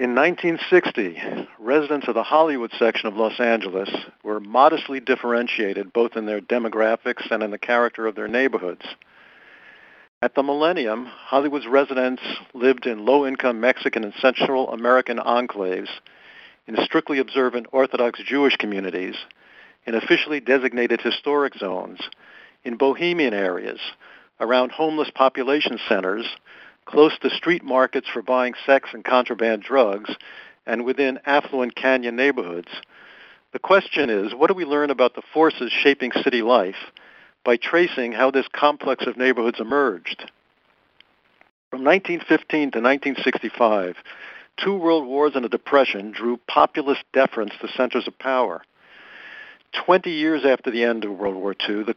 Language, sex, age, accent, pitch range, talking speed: English, male, 60-79, American, 115-145 Hz, 135 wpm